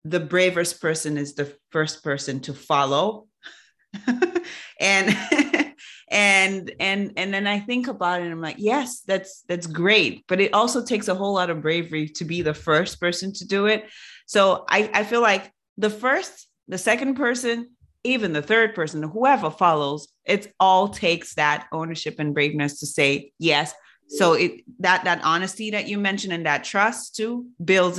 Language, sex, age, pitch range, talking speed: English, female, 30-49, 155-205 Hz, 175 wpm